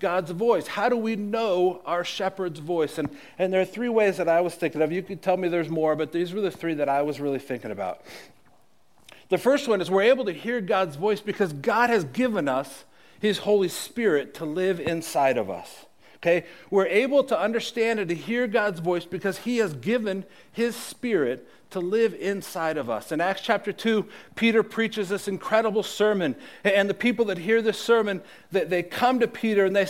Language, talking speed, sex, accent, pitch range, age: English, 205 wpm, male, American, 180-230 Hz, 50-69